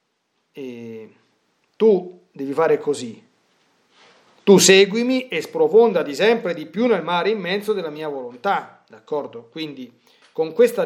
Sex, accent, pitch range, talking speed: male, native, 155-240 Hz, 120 wpm